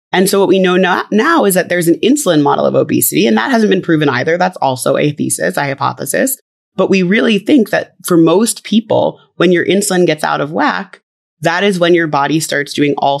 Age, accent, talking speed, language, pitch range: 20-39, American, 225 wpm, English, 145-185 Hz